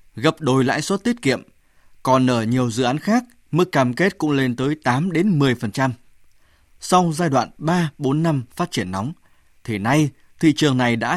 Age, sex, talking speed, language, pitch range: 20-39, male, 190 wpm, Vietnamese, 120-160 Hz